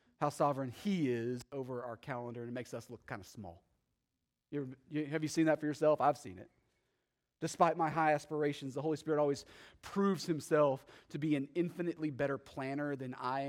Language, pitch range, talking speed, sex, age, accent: English, 130-165 Hz, 185 wpm, male, 30-49, American